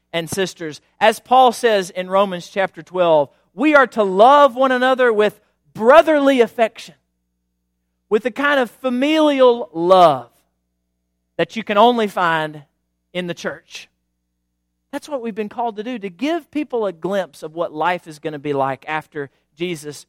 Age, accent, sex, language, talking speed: 40-59, American, male, English, 160 wpm